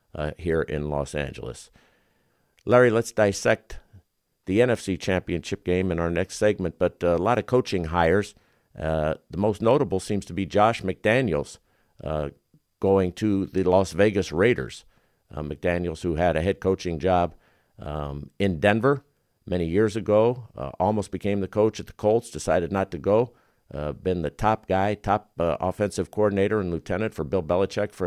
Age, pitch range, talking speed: 50-69, 85-105 Hz, 170 wpm